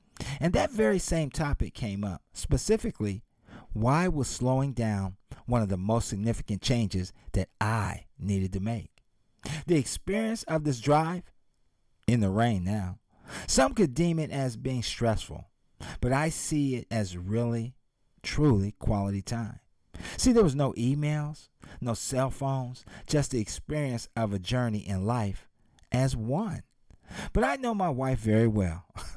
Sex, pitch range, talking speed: male, 95-145 Hz, 150 wpm